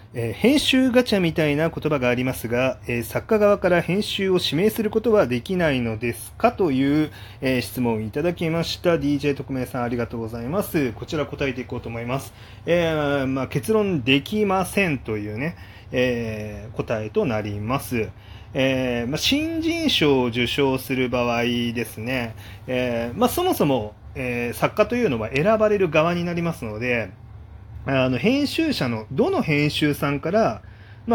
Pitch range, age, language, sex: 120-175 Hz, 30-49, Japanese, male